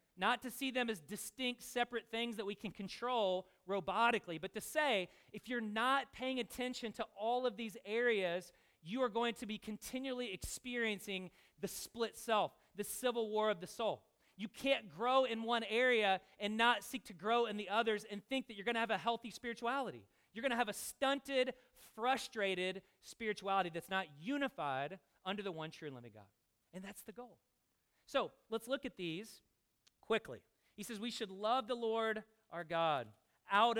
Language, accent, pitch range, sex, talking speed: English, American, 185-230 Hz, male, 185 wpm